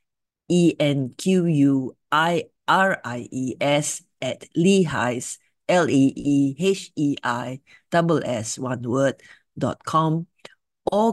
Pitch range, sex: 130-165 Hz, female